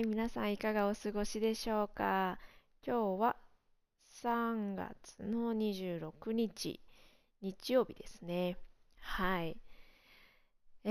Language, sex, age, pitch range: Japanese, female, 20-39, 175-225 Hz